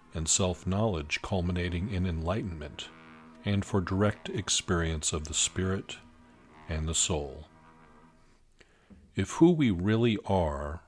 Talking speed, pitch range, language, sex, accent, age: 110 wpm, 80-105 Hz, English, male, American, 50-69